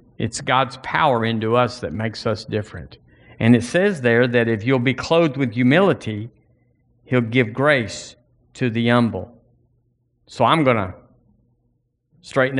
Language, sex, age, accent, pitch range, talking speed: English, male, 50-69, American, 120-150 Hz, 150 wpm